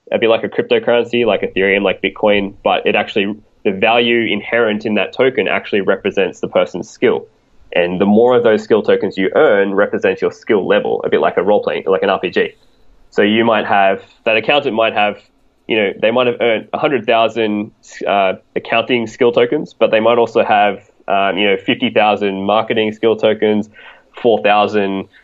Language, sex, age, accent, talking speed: English, male, 20-39, Australian, 180 wpm